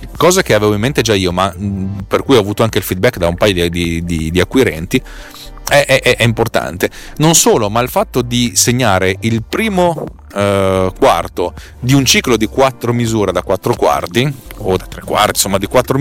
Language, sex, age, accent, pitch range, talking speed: Italian, male, 40-59, native, 95-130 Hz, 195 wpm